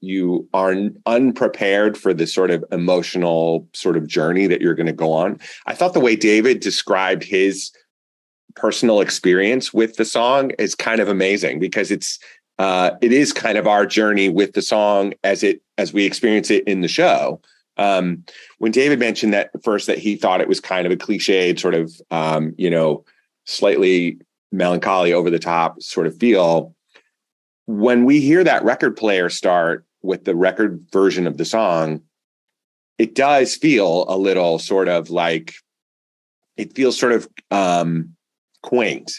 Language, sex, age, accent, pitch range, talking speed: English, male, 30-49, American, 85-105 Hz, 170 wpm